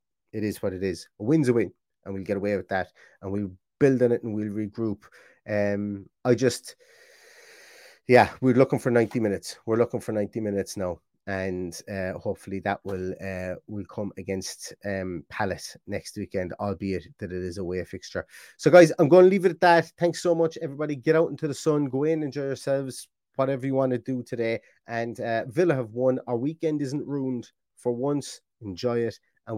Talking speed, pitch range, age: 205 wpm, 100-135 Hz, 30-49